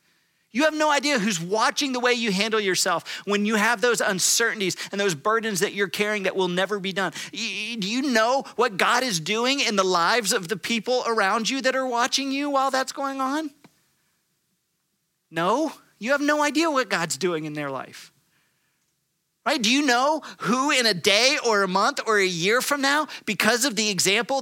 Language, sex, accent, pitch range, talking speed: English, male, American, 190-260 Hz, 200 wpm